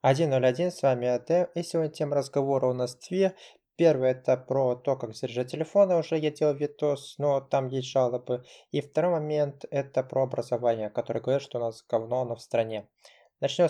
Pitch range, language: 125-145 Hz, Russian